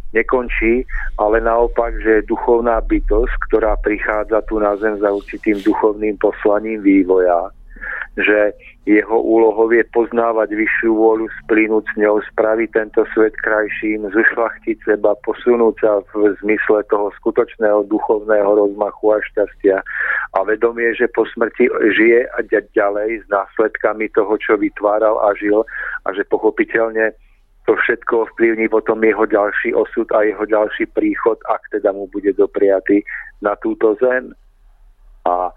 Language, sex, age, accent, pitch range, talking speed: Czech, male, 40-59, native, 105-120 Hz, 135 wpm